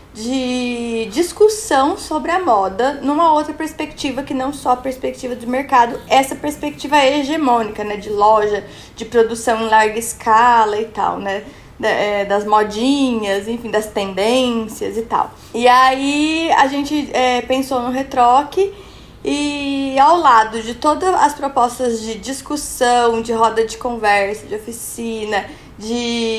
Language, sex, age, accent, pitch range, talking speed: Portuguese, female, 20-39, Brazilian, 225-295 Hz, 135 wpm